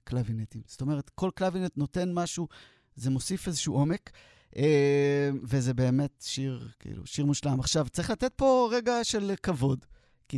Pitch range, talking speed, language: 130-175 Hz, 145 wpm, Hebrew